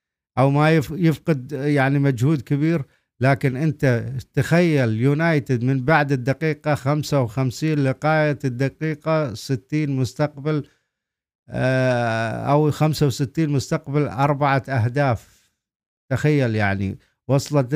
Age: 50-69